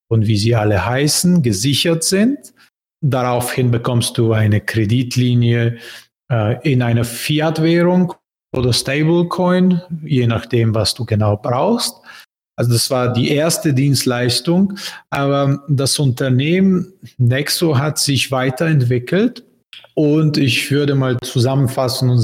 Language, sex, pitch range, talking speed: German, male, 115-140 Hz, 115 wpm